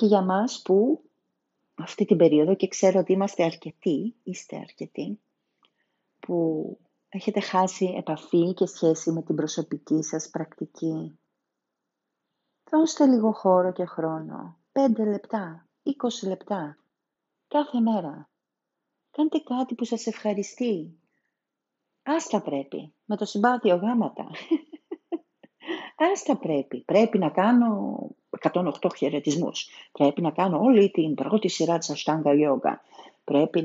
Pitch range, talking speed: 160-225 Hz, 120 wpm